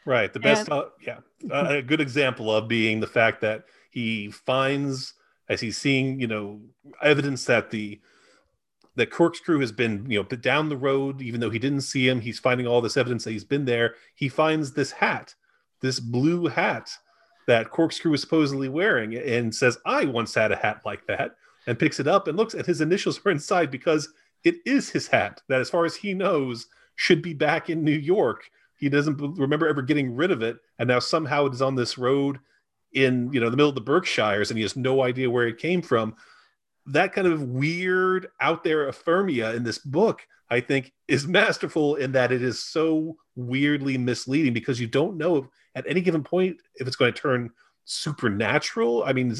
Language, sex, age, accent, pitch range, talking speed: English, male, 30-49, American, 120-155 Hz, 200 wpm